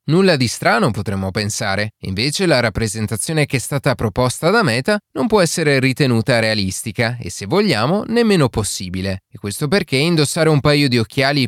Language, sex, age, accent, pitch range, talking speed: Italian, male, 20-39, native, 110-160 Hz, 165 wpm